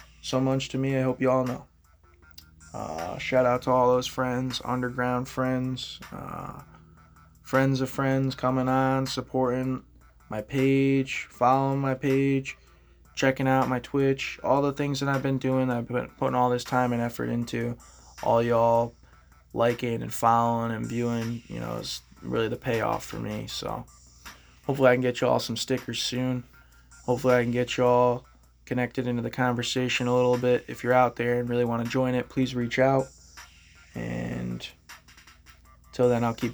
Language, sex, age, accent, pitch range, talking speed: English, male, 20-39, American, 115-130 Hz, 170 wpm